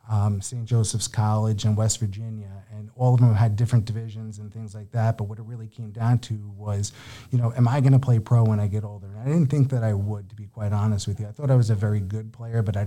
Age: 30-49